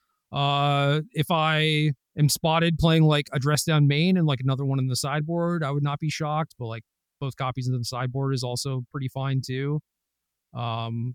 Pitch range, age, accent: 125-160 Hz, 40-59, American